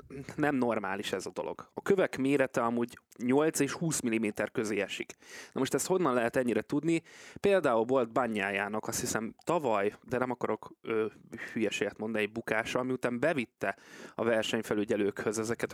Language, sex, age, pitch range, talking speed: Hungarian, male, 20-39, 110-135 Hz, 155 wpm